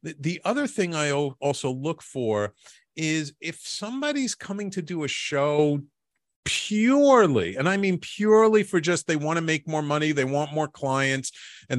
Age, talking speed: 40-59, 170 wpm